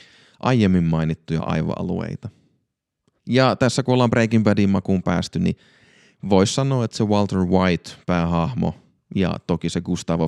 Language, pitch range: Finnish, 90-115 Hz